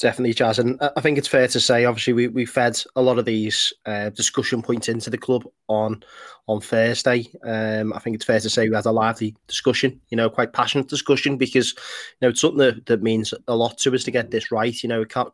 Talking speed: 245 wpm